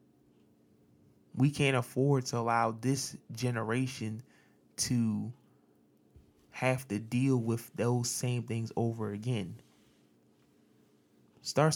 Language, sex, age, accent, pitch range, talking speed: English, male, 20-39, American, 110-145 Hz, 90 wpm